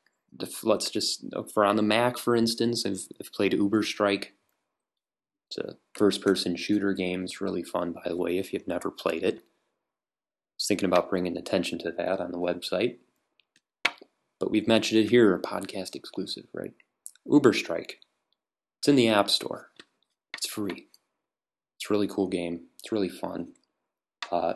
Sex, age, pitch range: male, 20-39, 90-110 Hz